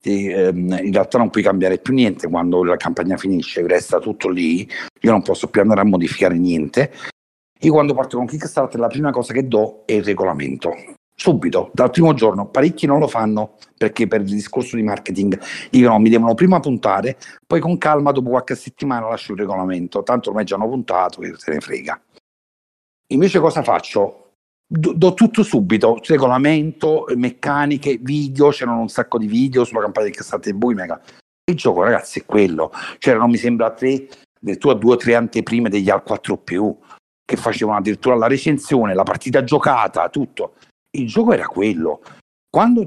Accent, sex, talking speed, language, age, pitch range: native, male, 180 wpm, Italian, 60-79, 105-145 Hz